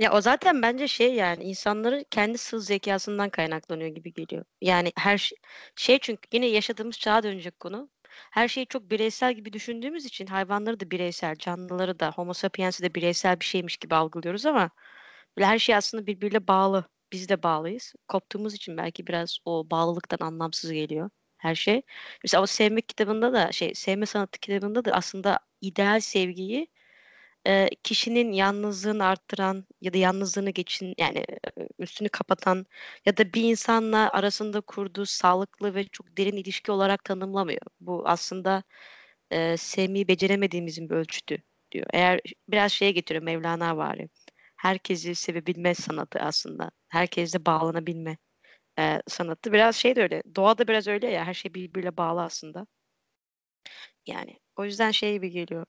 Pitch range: 175-220 Hz